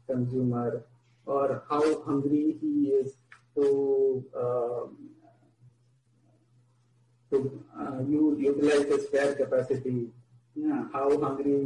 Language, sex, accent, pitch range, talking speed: English, male, Indian, 130-155 Hz, 85 wpm